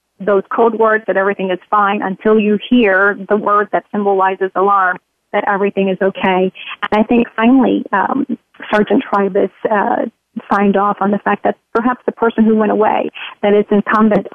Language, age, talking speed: English, 40-59, 175 wpm